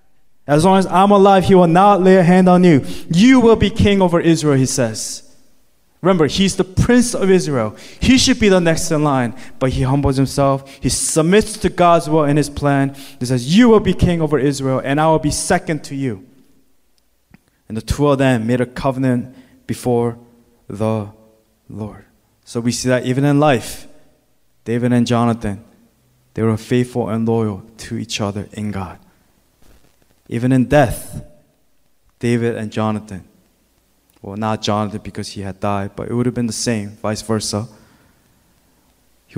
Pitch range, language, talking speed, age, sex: 105-140 Hz, English, 175 wpm, 20-39, male